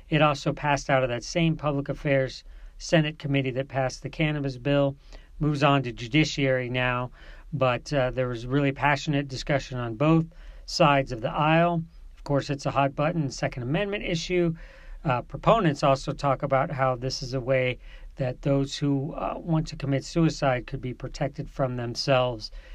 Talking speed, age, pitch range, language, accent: 170 wpm, 40-59, 130-160 Hz, English, American